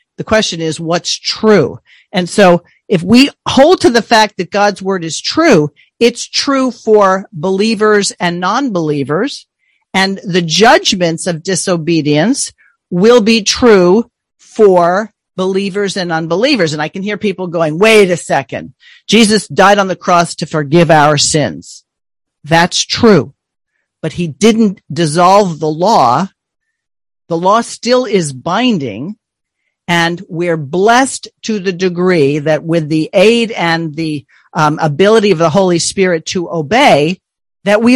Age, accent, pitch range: 50-69, American, 165-215 Hz